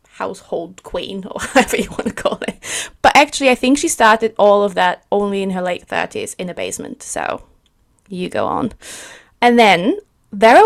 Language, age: English, 20-39